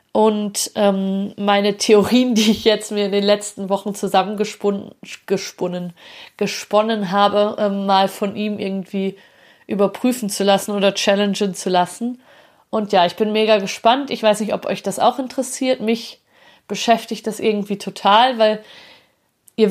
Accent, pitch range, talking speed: German, 195-220 Hz, 145 wpm